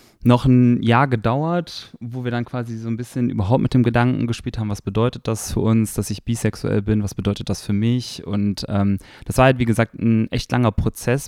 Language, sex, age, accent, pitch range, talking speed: German, male, 20-39, German, 105-125 Hz, 225 wpm